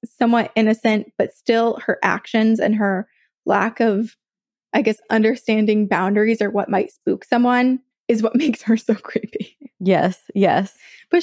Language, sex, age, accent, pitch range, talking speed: English, female, 20-39, American, 205-245 Hz, 150 wpm